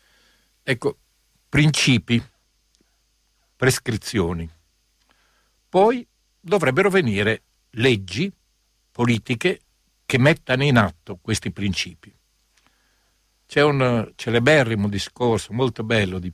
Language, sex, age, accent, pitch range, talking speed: Italian, male, 60-79, native, 105-135 Hz, 75 wpm